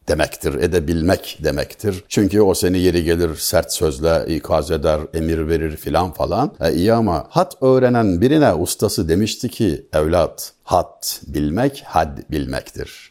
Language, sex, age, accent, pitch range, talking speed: Turkish, male, 60-79, native, 105-150 Hz, 135 wpm